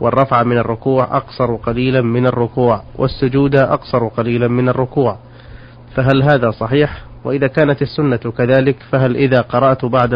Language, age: Arabic, 30-49